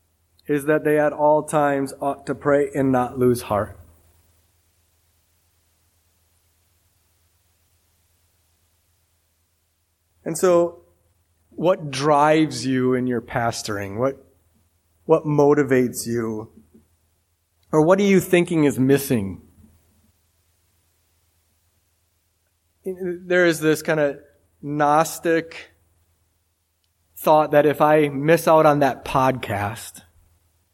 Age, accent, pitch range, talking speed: 30-49, American, 85-135 Hz, 90 wpm